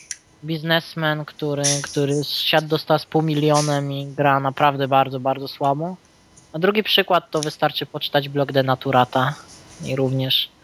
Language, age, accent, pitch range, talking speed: Polish, 20-39, native, 140-155 Hz, 135 wpm